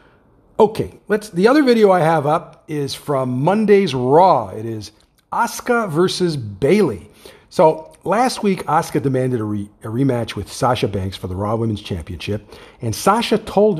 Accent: American